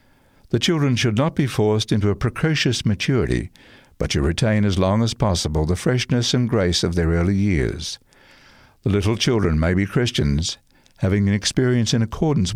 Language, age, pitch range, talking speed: English, 60-79, 95-125 Hz, 170 wpm